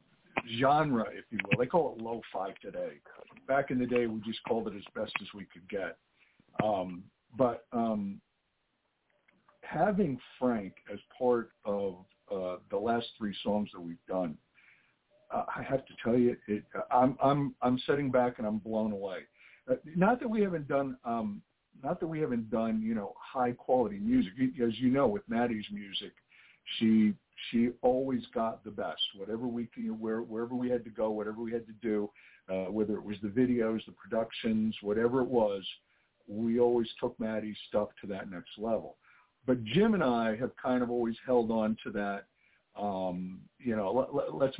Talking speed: 185 wpm